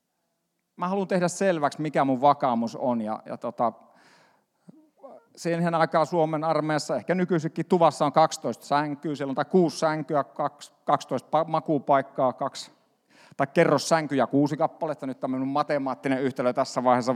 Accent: native